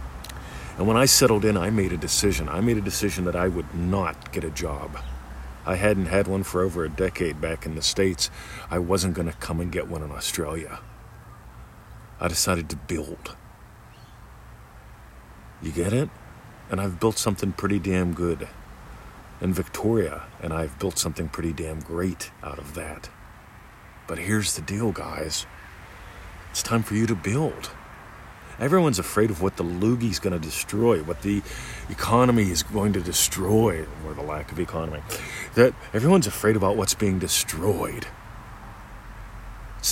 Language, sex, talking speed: English, male, 160 wpm